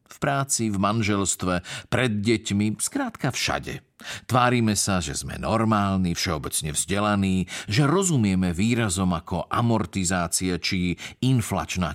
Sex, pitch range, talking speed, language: male, 95-125 Hz, 110 wpm, Slovak